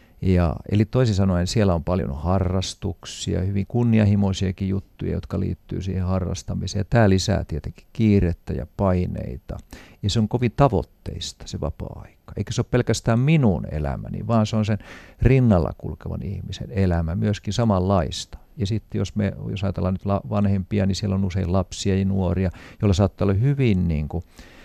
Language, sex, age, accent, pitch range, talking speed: Finnish, male, 50-69, native, 90-110 Hz, 160 wpm